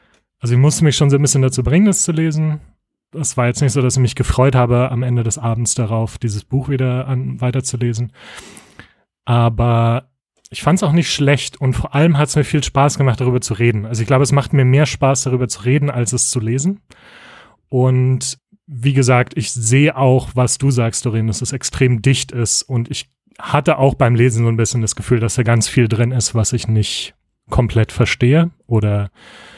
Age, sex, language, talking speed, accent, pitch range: 30-49, male, German, 210 wpm, German, 105-130 Hz